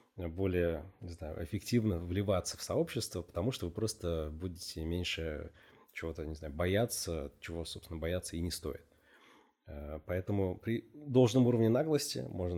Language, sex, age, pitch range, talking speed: Russian, male, 30-49, 80-95 Hz, 135 wpm